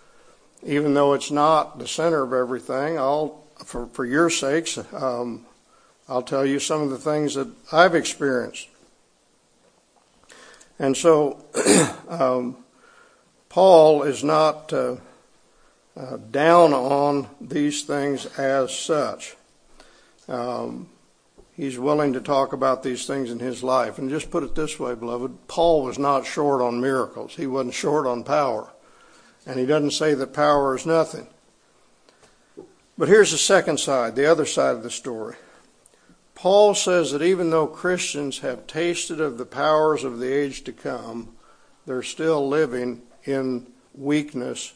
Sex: male